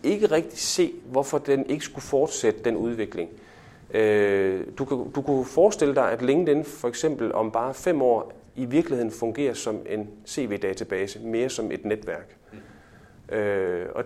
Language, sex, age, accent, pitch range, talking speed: Danish, male, 30-49, native, 110-140 Hz, 140 wpm